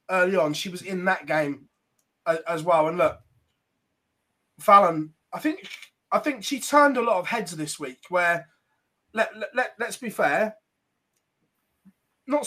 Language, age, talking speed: English, 20-39, 155 wpm